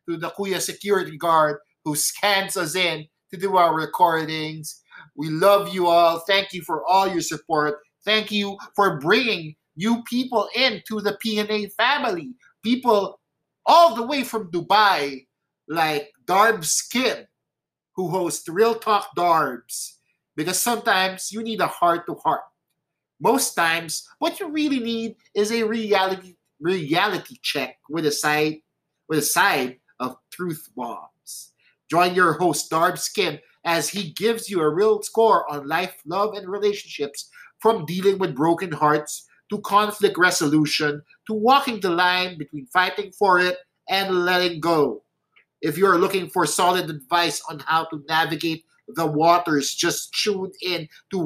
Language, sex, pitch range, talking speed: English, male, 160-205 Hz, 150 wpm